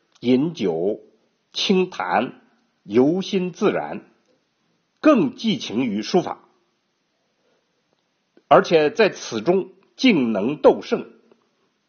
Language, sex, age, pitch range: Chinese, male, 50-69, 150-235 Hz